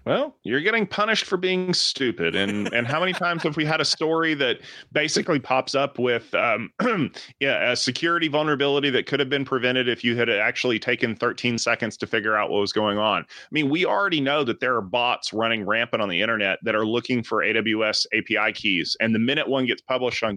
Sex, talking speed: male, 220 wpm